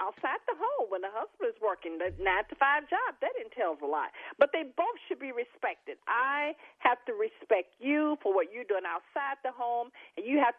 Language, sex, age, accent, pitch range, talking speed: English, female, 40-59, American, 210-325 Hz, 205 wpm